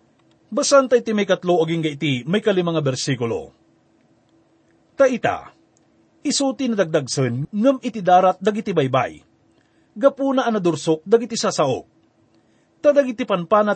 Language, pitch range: English, 160-245 Hz